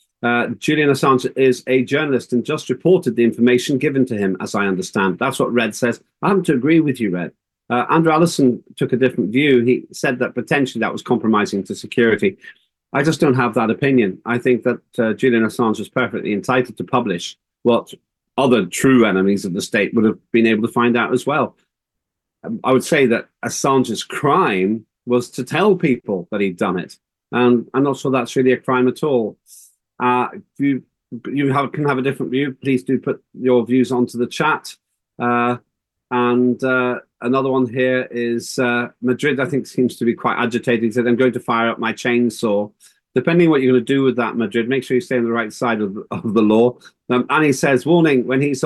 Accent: British